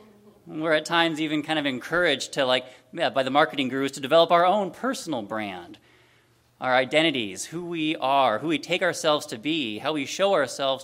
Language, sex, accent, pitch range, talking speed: English, male, American, 120-165 Hz, 190 wpm